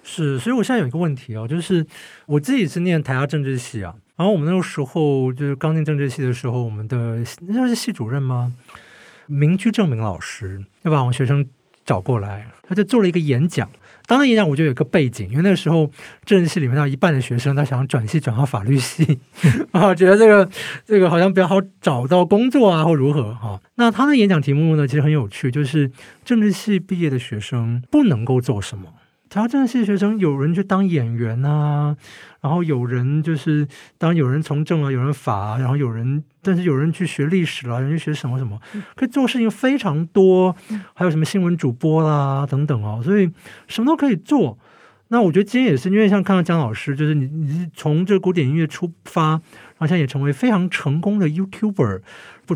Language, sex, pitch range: Chinese, male, 135-190 Hz